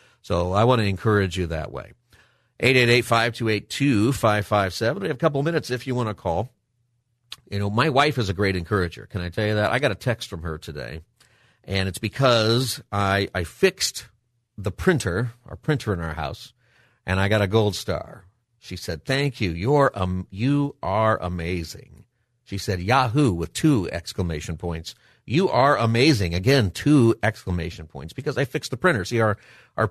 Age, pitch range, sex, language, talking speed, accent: 50-69, 95-120 Hz, male, English, 185 wpm, American